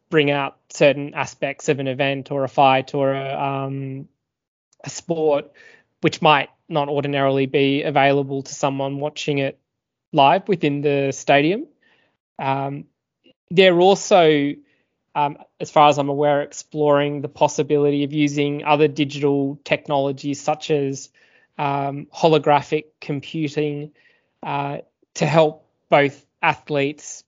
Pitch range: 140-150 Hz